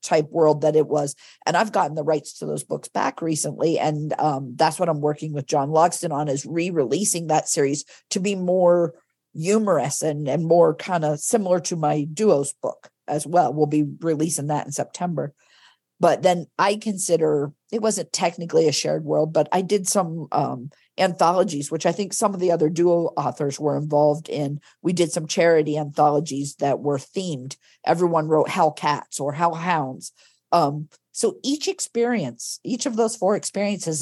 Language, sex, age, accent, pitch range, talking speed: English, female, 50-69, American, 150-175 Hz, 180 wpm